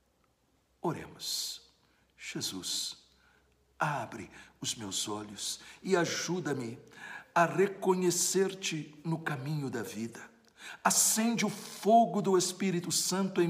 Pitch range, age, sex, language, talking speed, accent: 130-205 Hz, 60-79, male, Portuguese, 95 wpm, Brazilian